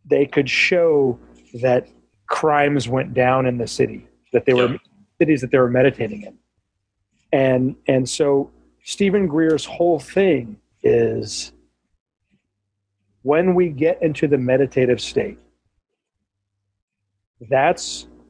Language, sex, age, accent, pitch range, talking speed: English, male, 40-59, American, 100-160 Hz, 115 wpm